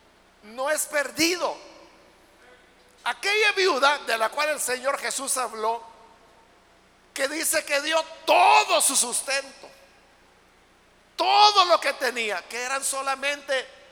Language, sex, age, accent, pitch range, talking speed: Spanish, male, 50-69, Mexican, 255-320 Hz, 110 wpm